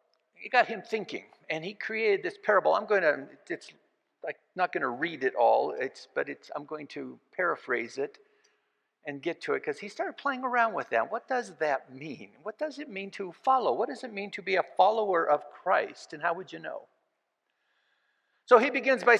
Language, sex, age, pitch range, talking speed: English, male, 50-69, 145-240 Hz, 215 wpm